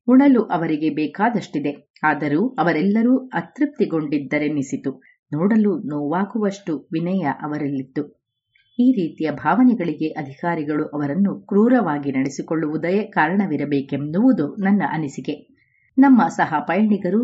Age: 30-49